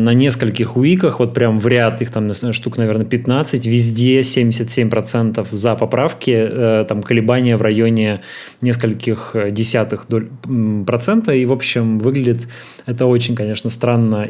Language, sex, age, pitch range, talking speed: Russian, male, 20-39, 115-140 Hz, 130 wpm